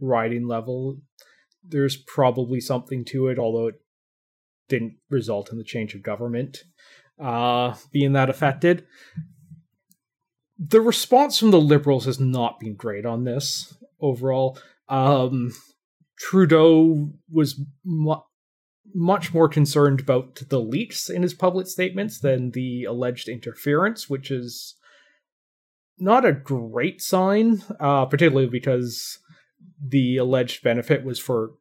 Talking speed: 120 wpm